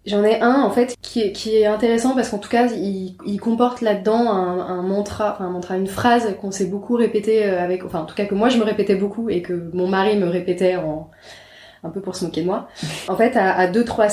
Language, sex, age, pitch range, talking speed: French, female, 20-39, 180-210 Hz, 250 wpm